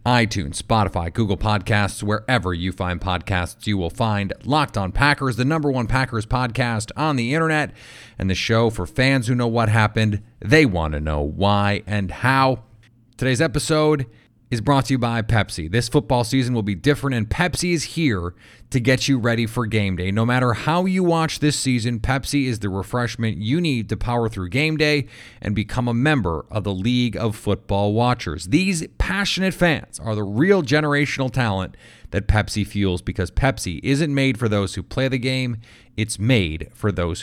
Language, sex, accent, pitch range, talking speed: English, male, American, 100-130 Hz, 190 wpm